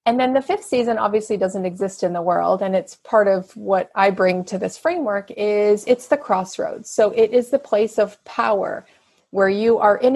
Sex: female